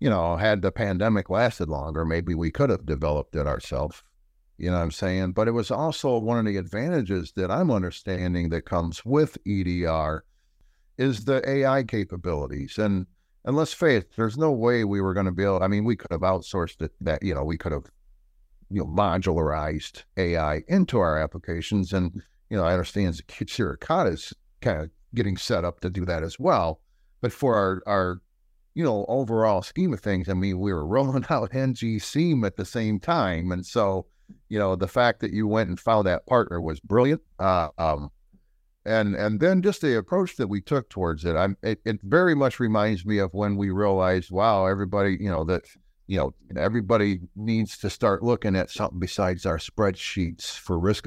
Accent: American